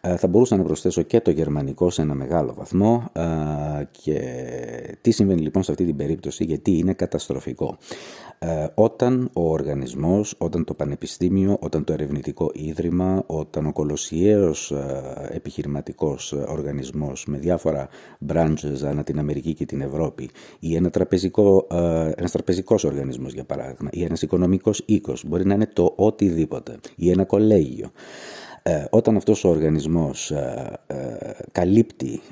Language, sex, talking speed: English, male, 135 wpm